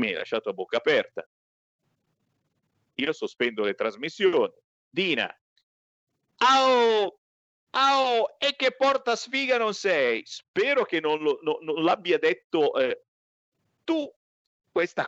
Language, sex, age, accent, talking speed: Italian, male, 50-69, native, 115 wpm